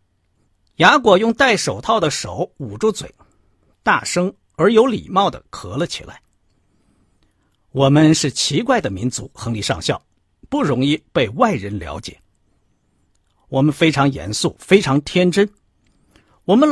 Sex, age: male, 50-69